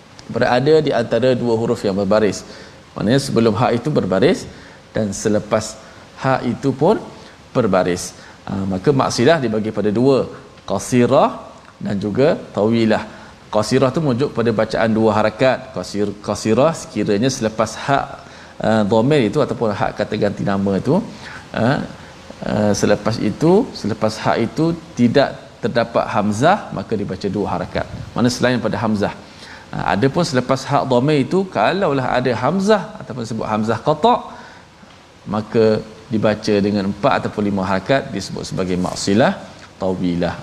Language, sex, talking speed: Malayalam, male, 140 wpm